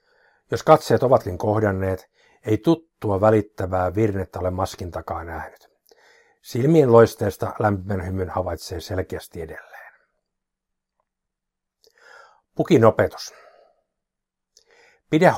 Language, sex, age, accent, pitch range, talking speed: Finnish, male, 60-79, native, 95-120 Hz, 85 wpm